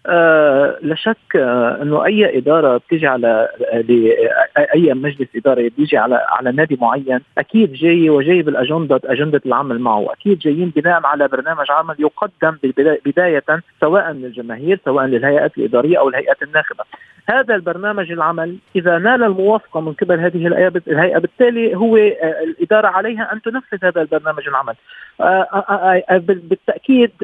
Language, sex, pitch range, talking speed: Arabic, male, 160-210 Hz, 135 wpm